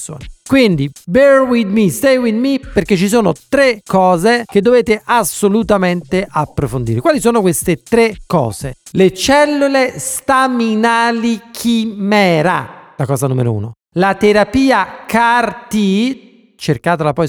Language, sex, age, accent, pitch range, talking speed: Italian, male, 40-59, native, 155-225 Hz, 120 wpm